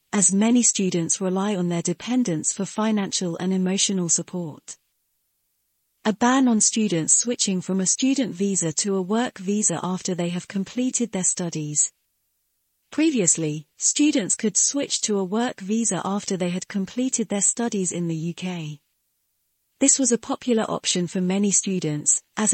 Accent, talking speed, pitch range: British, 150 wpm, 180-225 Hz